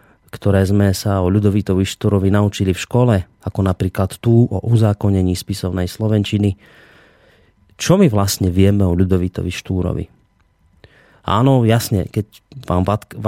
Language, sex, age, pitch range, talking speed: Slovak, male, 30-49, 100-125 Hz, 120 wpm